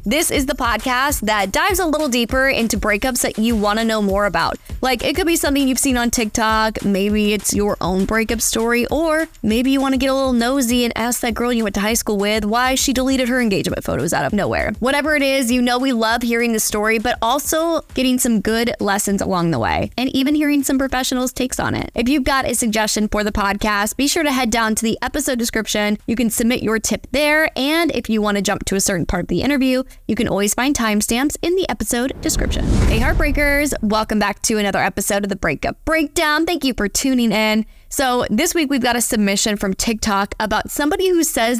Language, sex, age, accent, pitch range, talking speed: English, female, 20-39, American, 210-260 Hz, 235 wpm